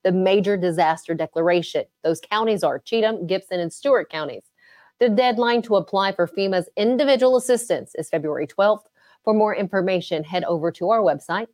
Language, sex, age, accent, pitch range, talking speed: English, female, 30-49, American, 175-235 Hz, 160 wpm